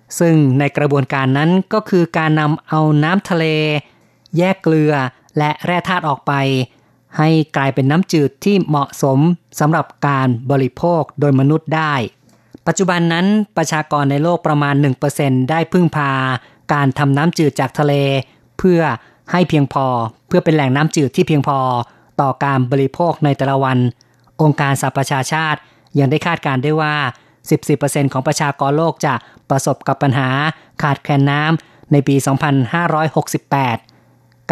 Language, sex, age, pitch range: Thai, female, 20-39, 135-155 Hz